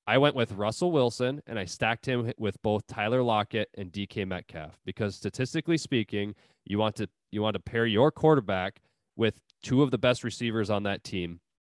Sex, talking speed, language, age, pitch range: male, 190 wpm, English, 20-39, 100-125 Hz